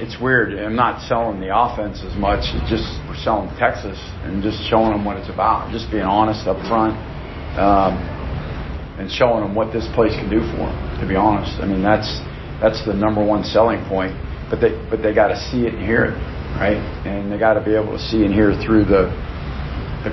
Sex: male